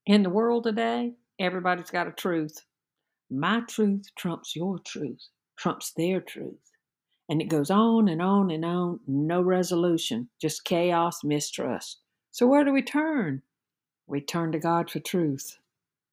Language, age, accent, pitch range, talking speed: English, 60-79, American, 160-215 Hz, 150 wpm